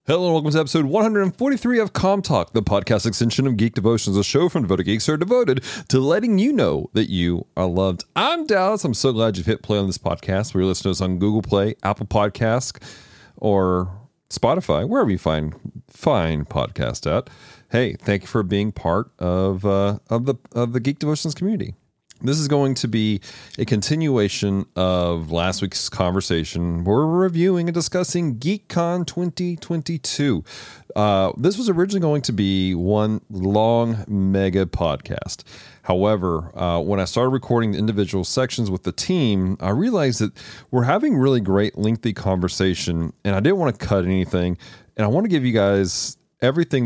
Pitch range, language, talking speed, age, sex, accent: 95-145 Hz, English, 175 wpm, 40-59, male, American